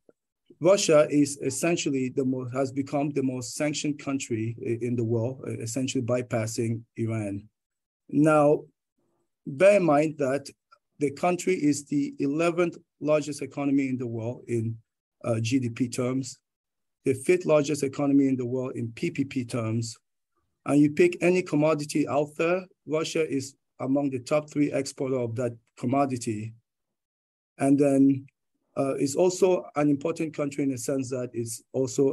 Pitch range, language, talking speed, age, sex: 125-150 Hz, English, 145 wpm, 40-59, male